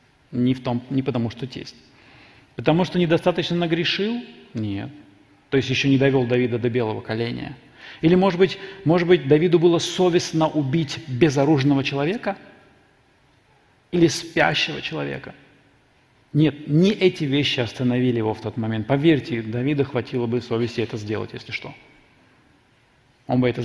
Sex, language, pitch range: male, Russian, 120-150 Hz